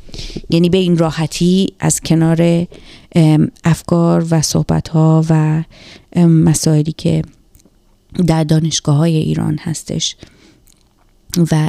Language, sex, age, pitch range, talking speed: Persian, female, 30-49, 155-175 Hz, 100 wpm